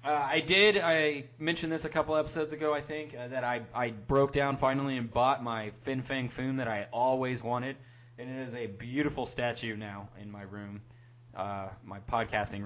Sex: male